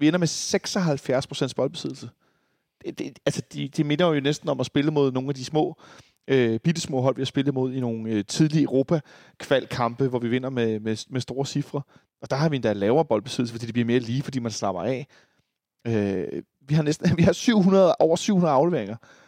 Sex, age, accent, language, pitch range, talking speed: male, 30-49, native, Danish, 125-155 Hz, 215 wpm